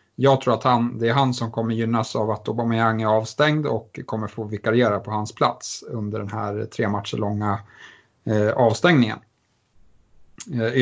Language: Swedish